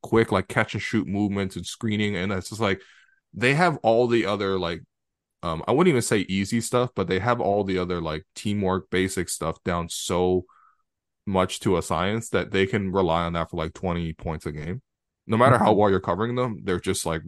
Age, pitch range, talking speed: 20-39, 90-105 Hz, 220 wpm